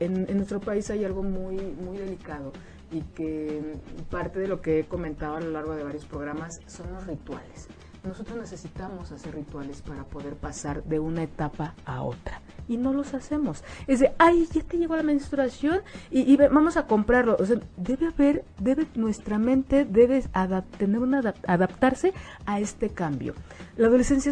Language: Spanish